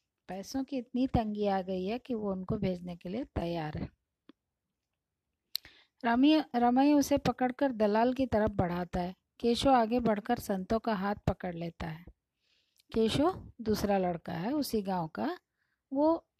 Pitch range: 195-240 Hz